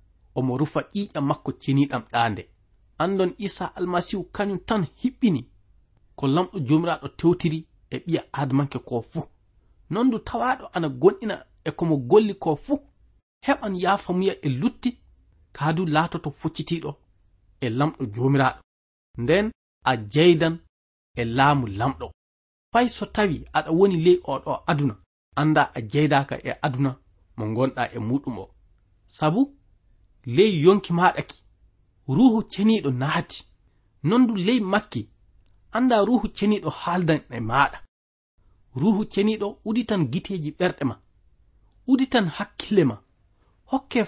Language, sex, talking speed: English, male, 125 wpm